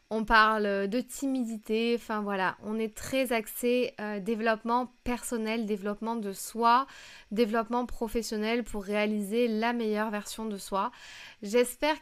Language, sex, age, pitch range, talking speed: French, female, 20-39, 205-235 Hz, 130 wpm